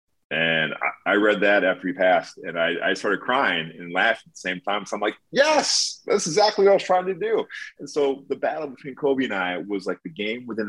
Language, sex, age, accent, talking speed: English, male, 30-49, American, 235 wpm